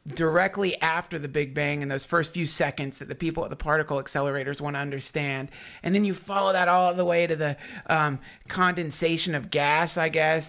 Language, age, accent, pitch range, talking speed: English, 30-49, American, 150-180 Hz, 205 wpm